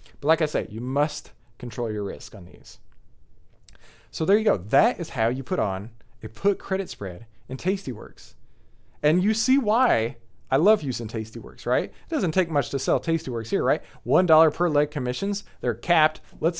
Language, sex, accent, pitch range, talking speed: English, male, American, 115-175 Hz, 190 wpm